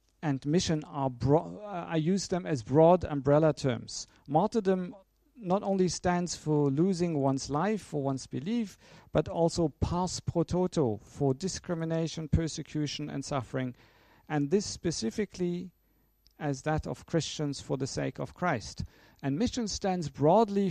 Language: Danish